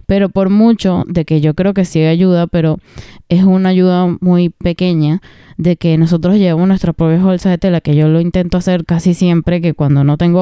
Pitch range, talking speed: 170-195 Hz, 205 wpm